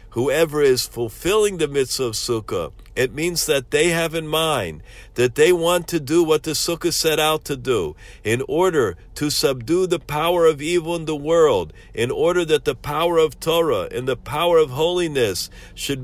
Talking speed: 185 wpm